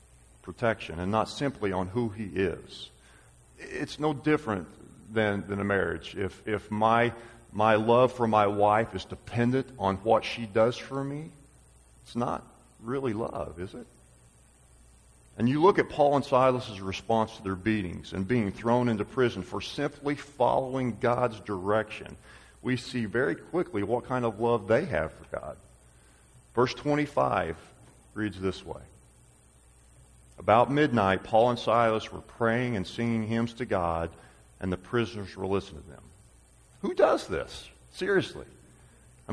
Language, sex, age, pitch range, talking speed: English, male, 40-59, 90-125 Hz, 150 wpm